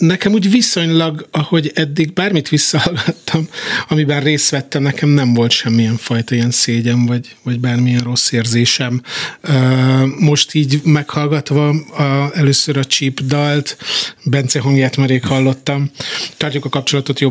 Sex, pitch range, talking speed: male, 130-145 Hz, 130 wpm